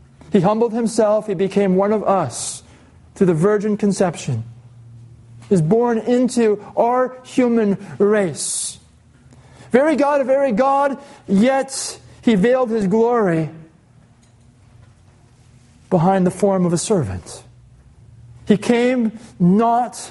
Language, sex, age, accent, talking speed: English, male, 40-59, American, 115 wpm